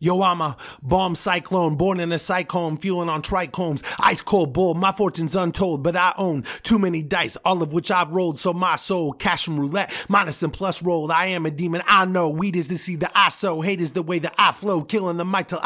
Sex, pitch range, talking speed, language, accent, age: male, 160-185 Hz, 240 wpm, English, American, 30-49